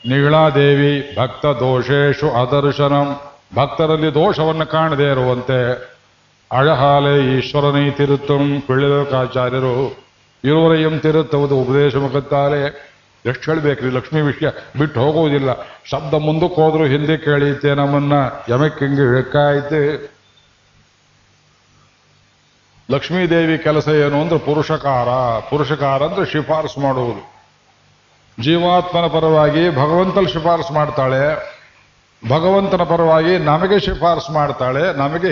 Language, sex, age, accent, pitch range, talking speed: Kannada, male, 50-69, native, 135-155 Hz, 85 wpm